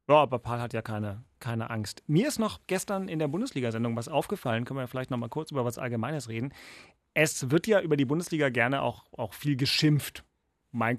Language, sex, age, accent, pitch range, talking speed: German, male, 40-59, German, 120-160 Hz, 215 wpm